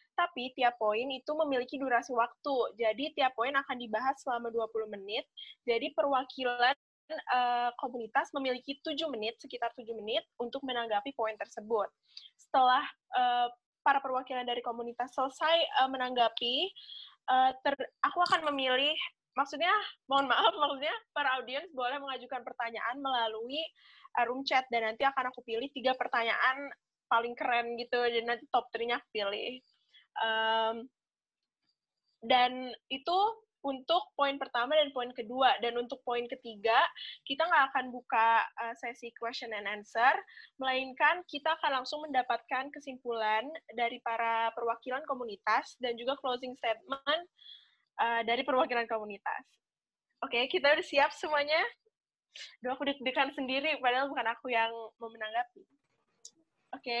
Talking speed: 135 wpm